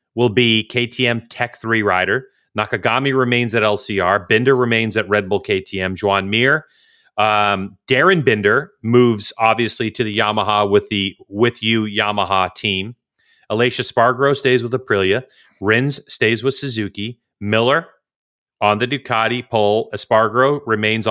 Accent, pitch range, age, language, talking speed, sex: American, 105-125 Hz, 30-49, English, 135 wpm, male